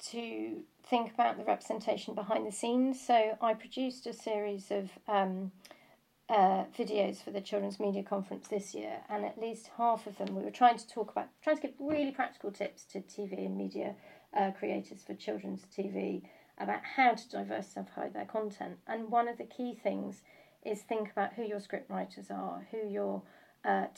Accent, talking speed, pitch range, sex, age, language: British, 185 wpm, 195-235 Hz, female, 40-59, English